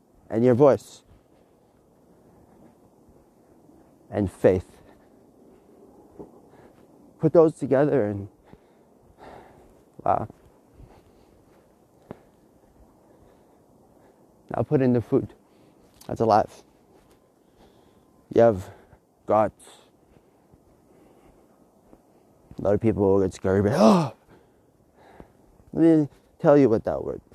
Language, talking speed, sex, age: English, 80 wpm, male, 30-49